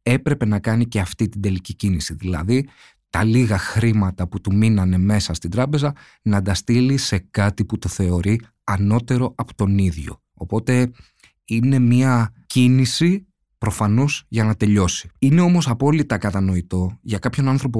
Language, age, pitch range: Greek, 30-49, 95-125 Hz